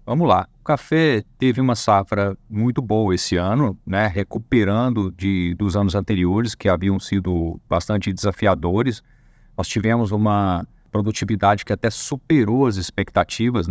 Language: Portuguese